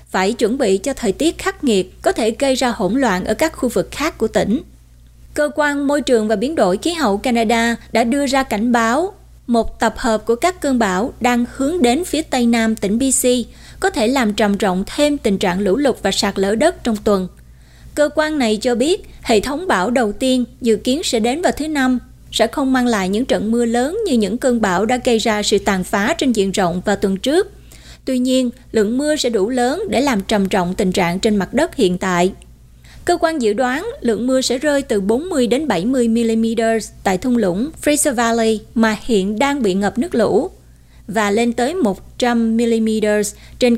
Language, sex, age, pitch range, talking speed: Vietnamese, female, 20-39, 210-265 Hz, 215 wpm